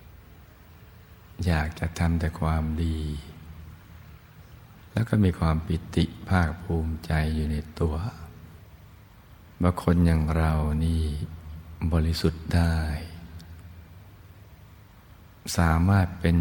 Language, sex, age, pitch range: Thai, male, 60-79, 80-90 Hz